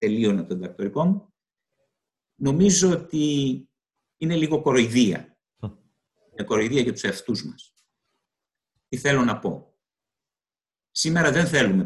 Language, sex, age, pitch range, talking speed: Greek, male, 50-69, 135-175 Hz, 105 wpm